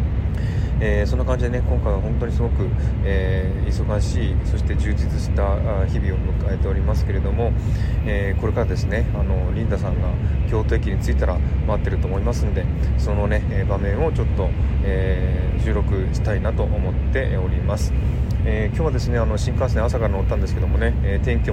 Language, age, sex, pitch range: Japanese, 20-39, male, 70-100 Hz